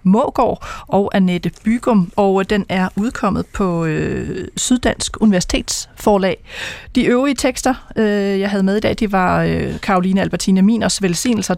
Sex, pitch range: female, 185-245 Hz